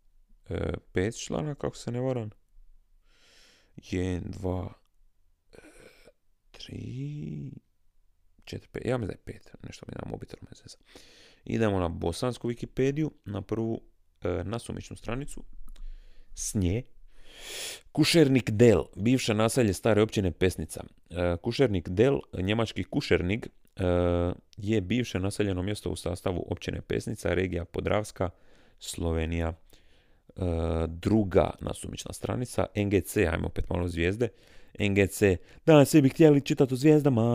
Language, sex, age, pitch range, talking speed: Croatian, male, 30-49, 85-115 Hz, 110 wpm